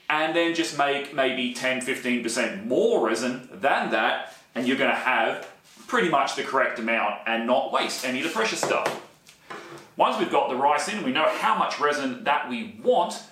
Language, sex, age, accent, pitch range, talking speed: English, male, 30-49, Australian, 120-185 Hz, 190 wpm